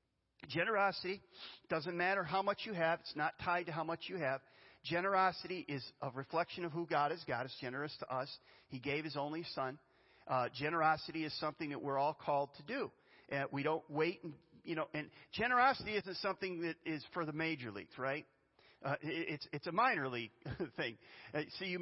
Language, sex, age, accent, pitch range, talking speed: English, male, 40-59, American, 140-190 Hz, 195 wpm